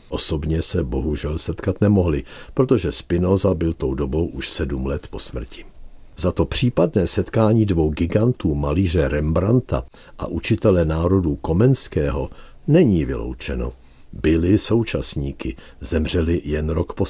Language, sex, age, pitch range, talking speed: Czech, male, 60-79, 75-100 Hz, 125 wpm